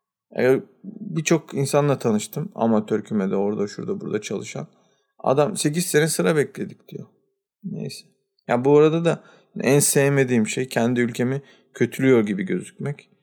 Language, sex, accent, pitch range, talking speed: Turkish, male, native, 120-160 Hz, 135 wpm